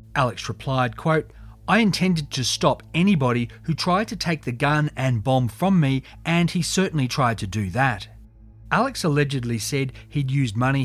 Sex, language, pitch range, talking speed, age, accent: male, English, 110-155 Hz, 170 wpm, 40-59, Australian